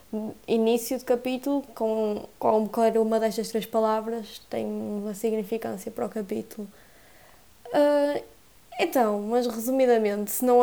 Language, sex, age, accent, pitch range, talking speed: Portuguese, female, 20-39, Brazilian, 220-255 Hz, 120 wpm